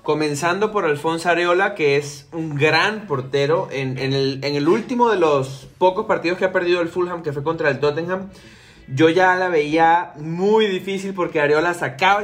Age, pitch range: 20-39, 145-180 Hz